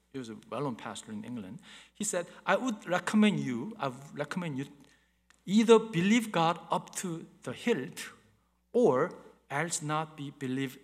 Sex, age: male, 50-69